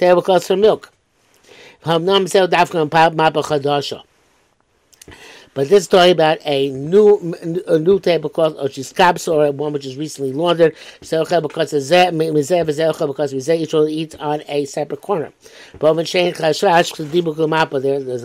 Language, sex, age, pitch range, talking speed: English, male, 60-79, 145-185 Hz, 100 wpm